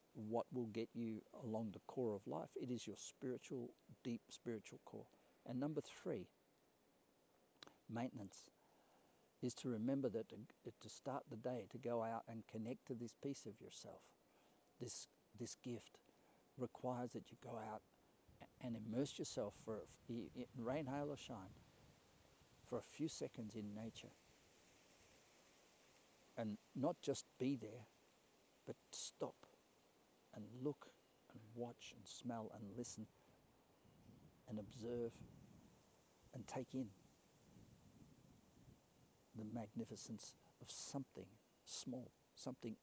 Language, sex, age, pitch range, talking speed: English, male, 60-79, 110-125 Hz, 120 wpm